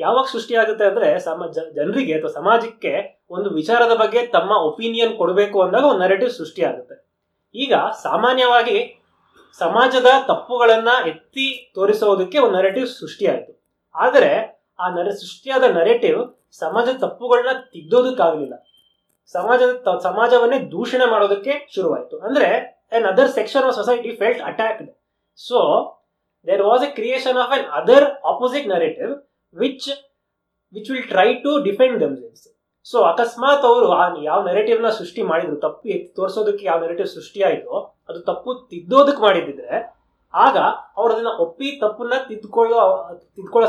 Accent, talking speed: native, 120 wpm